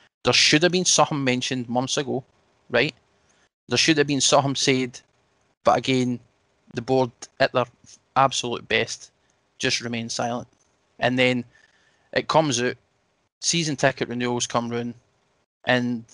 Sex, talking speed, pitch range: male, 140 wpm, 115-130 Hz